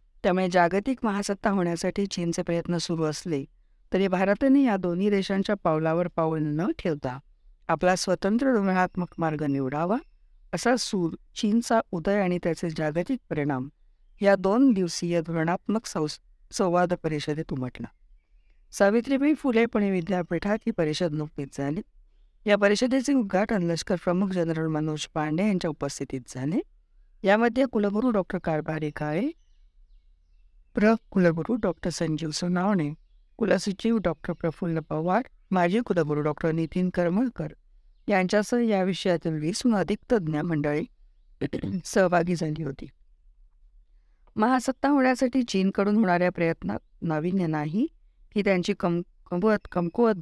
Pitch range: 155-210 Hz